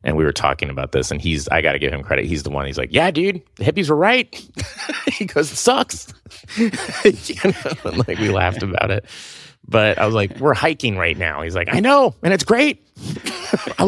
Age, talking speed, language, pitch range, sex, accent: 30-49, 215 wpm, English, 80-135 Hz, male, American